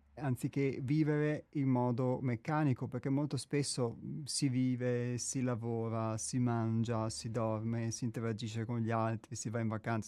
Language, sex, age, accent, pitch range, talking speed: Italian, male, 30-49, native, 115-140 Hz, 150 wpm